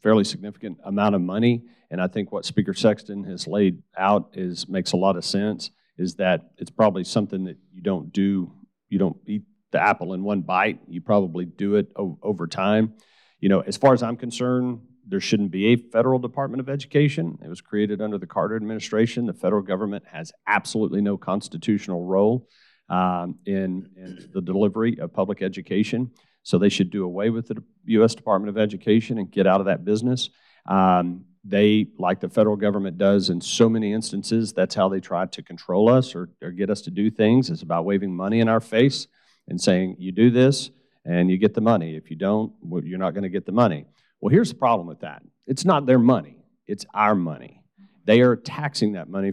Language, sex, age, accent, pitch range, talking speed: English, male, 40-59, American, 95-115 Hz, 205 wpm